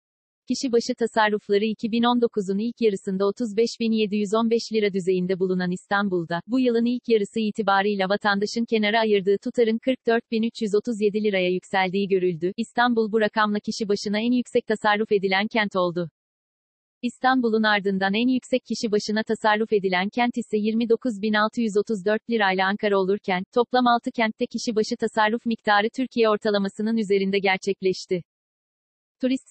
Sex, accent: female, native